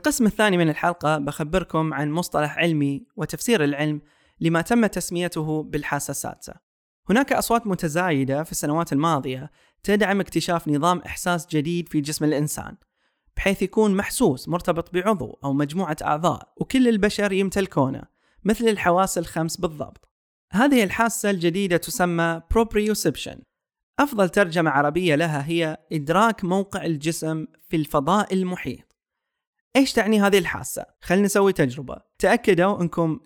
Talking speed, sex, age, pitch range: 125 wpm, male, 20-39, 145-195 Hz